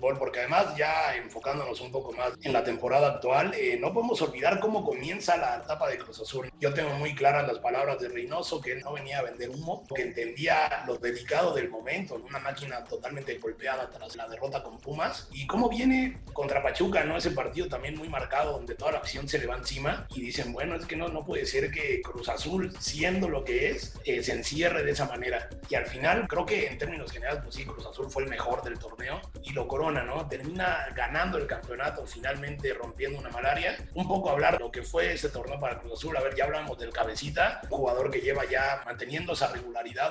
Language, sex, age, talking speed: Spanish, male, 30-49, 220 wpm